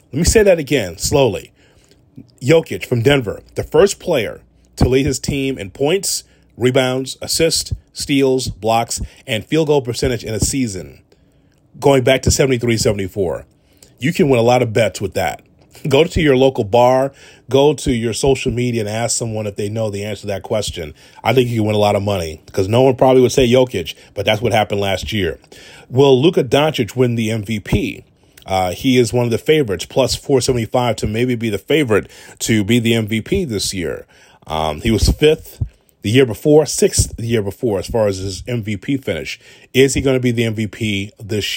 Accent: American